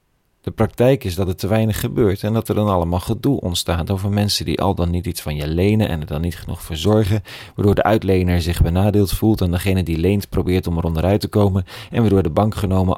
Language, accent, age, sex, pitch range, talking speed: Dutch, Dutch, 40-59, male, 90-110 Hz, 240 wpm